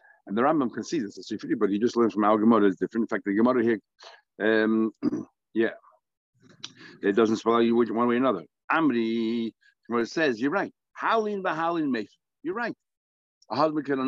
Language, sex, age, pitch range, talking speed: English, male, 60-79, 110-140 Hz, 190 wpm